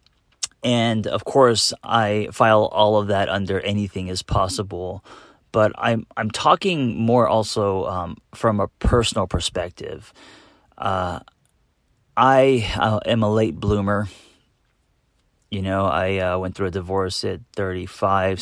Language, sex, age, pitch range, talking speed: English, male, 30-49, 95-110 Hz, 135 wpm